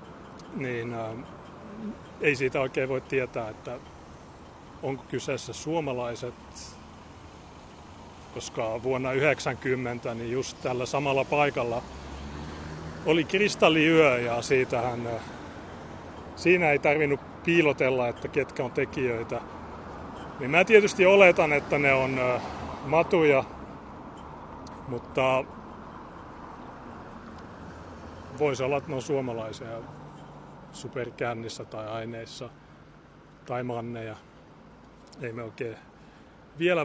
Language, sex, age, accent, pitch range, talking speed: Finnish, male, 30-49, native, 110-140 Hz, 85 wpm